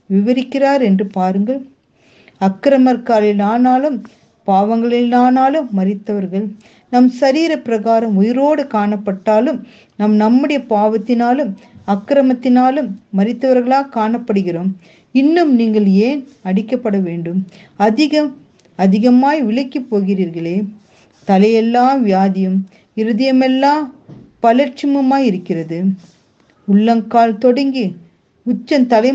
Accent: native